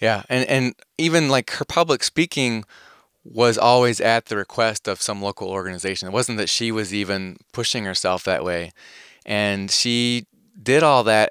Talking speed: 170 wpm